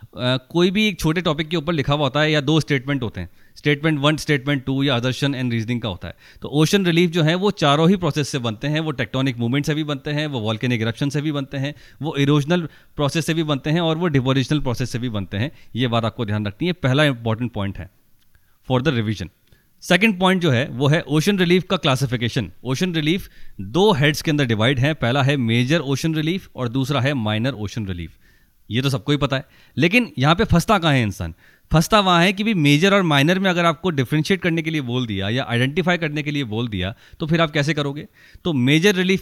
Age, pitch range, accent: 30-49, 120-160 Hz, native